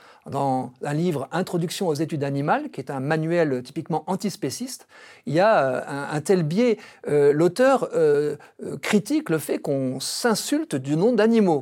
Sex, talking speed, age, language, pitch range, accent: male, 165 wpm, 50-69, French, 140-200 Hz, French